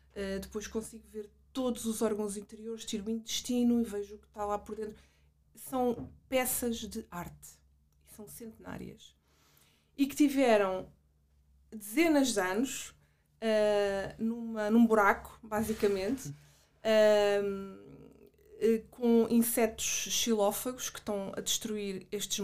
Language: Portuguese